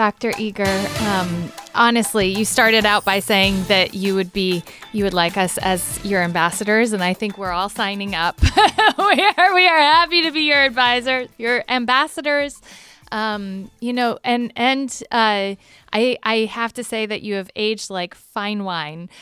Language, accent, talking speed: English, American, 175 wpm